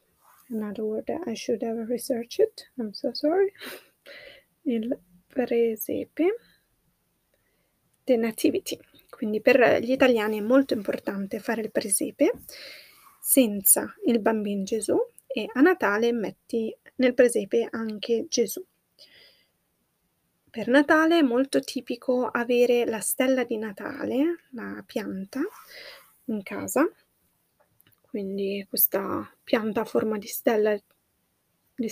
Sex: female